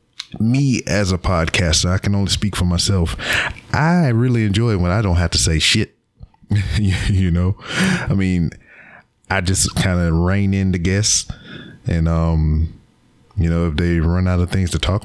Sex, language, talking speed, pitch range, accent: male, English, 180 wpm, 85-100 Hz, American